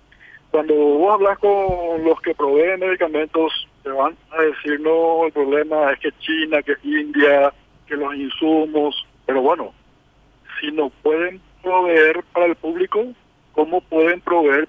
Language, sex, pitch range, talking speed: Spanish, male, 145-185 Hz, 145 wpm